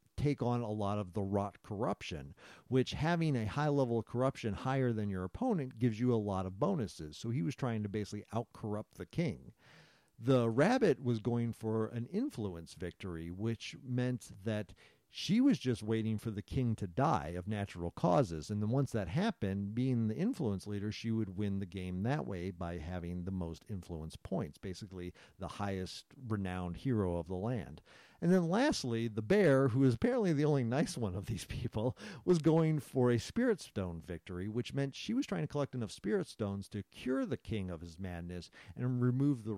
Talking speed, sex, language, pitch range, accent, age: 195 wpm, male, English, 100-140 Hz, American, 50-69